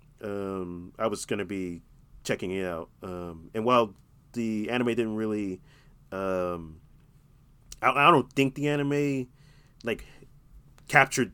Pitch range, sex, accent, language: 90-135 Hz, male, American, English